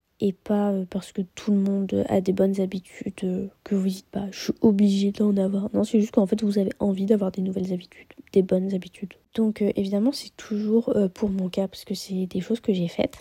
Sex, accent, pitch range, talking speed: female, French, 190-215 Hz, 245 wpm